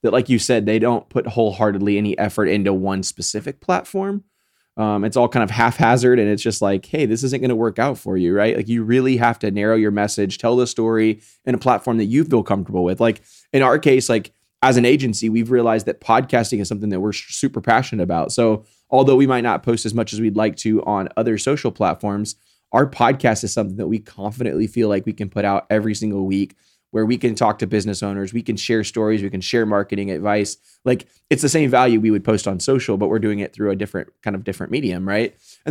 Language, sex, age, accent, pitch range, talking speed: English, male, 20-39, American, 105-125 Hz, 240 wpm